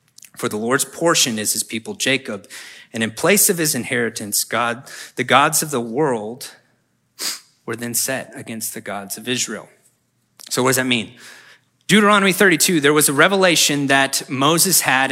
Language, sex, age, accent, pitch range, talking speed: English, male, 30-49, American, 130-170 Hz, 165 wpm